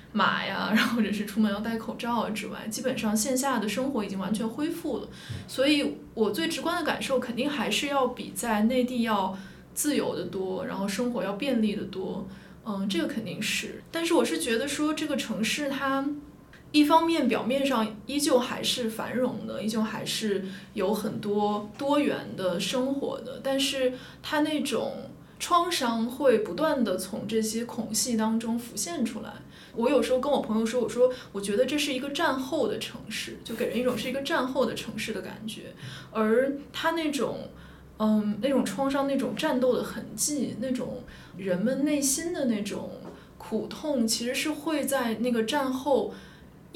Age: 20-39